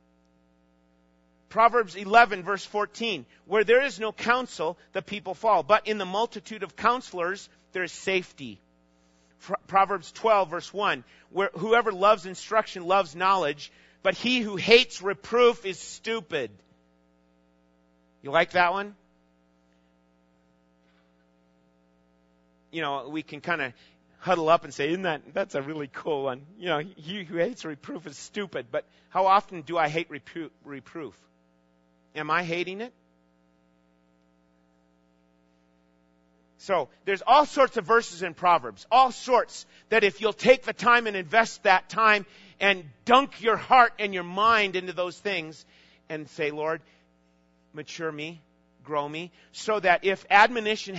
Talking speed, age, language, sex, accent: 140 wpm, 40-59, English, male, American